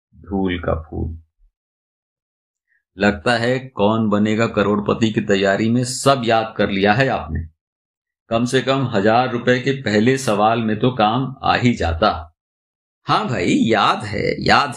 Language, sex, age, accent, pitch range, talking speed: Hindi, male, 50-69, native, 85-130 Hz, 145 wpm